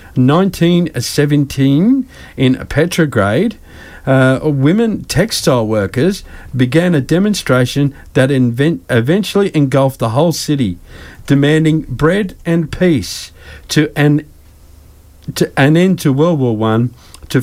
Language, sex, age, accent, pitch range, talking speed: English, male, 50-69, Australian, 115-155 Hz, 105 wpm